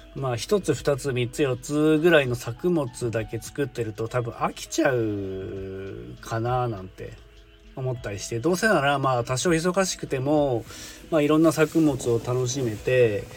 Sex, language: male, Japanese